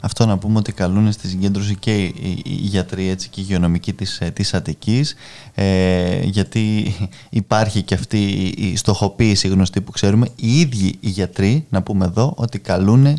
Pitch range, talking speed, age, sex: 105-135 Hz, 155 wpm, 20-39, male